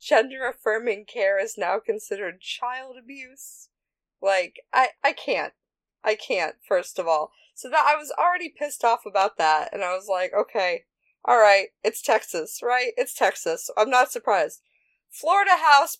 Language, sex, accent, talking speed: English, female, American, 160 wpm